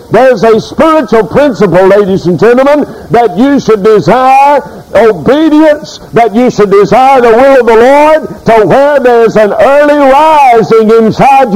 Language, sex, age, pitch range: English, male, 60-79, 205-270 Hz